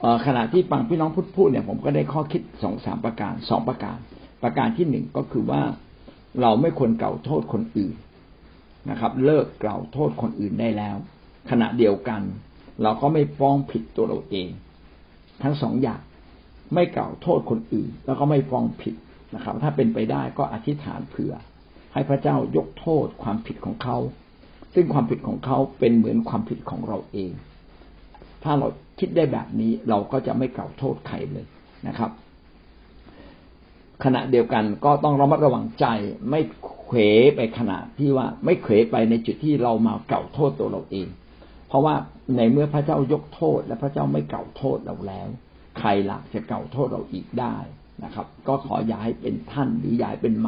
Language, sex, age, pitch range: Thai, male, 60-79, 100-140 Hz